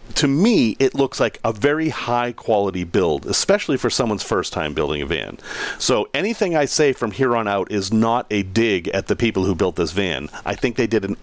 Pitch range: 105-160 Hz